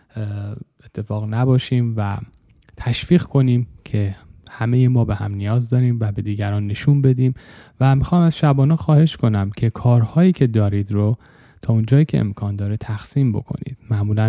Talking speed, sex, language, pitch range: 150 wpm, male, Persian, 105-130 Hz